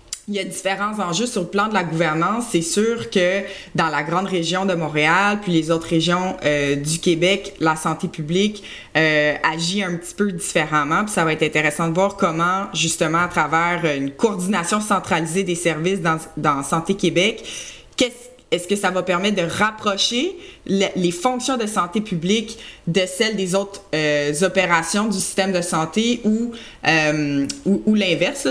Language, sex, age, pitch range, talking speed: French, female, 20-39, 160-195 Hz, 175 wpm